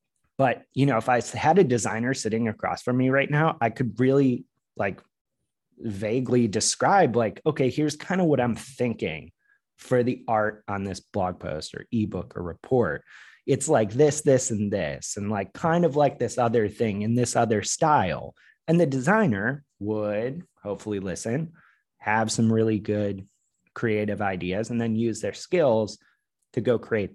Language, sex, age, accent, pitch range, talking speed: English, male, 30-49, American, 110-140 Hz, 170 wpm